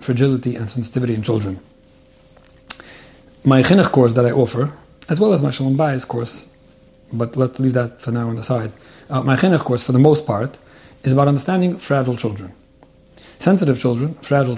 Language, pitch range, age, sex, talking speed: English, 120-145 Hz, 40-59, male, 175 wpm